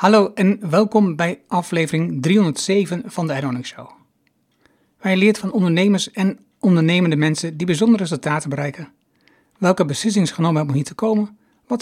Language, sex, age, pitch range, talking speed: Dutch, male, 60-79, 155-200 Hz, 150 wpm